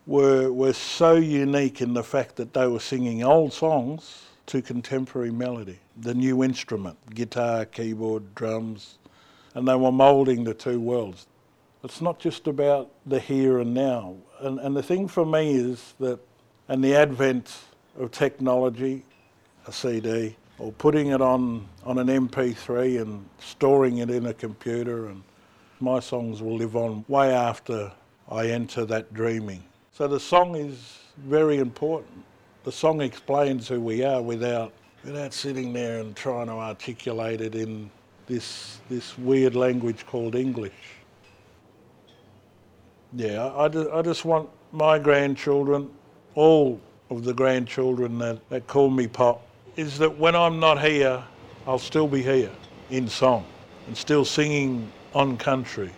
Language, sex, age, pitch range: English, male, 60-79, 115-140 Hz